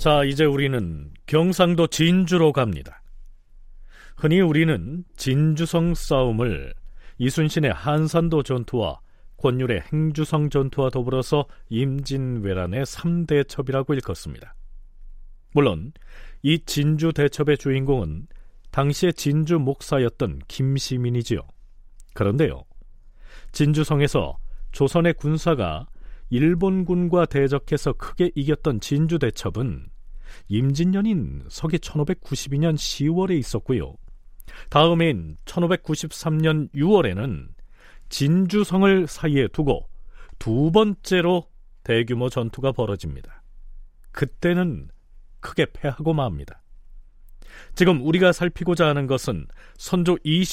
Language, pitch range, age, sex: Korean, 120-165 Hz, 40-59, male